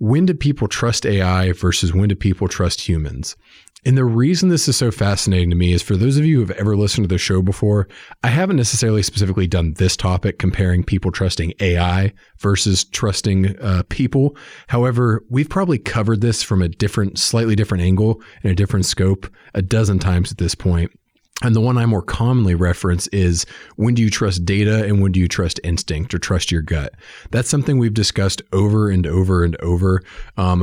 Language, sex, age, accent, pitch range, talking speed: English, male, 40-59, American, 90-110 Hz, 200 wpm